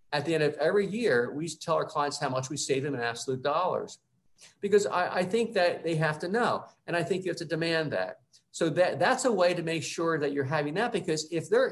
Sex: male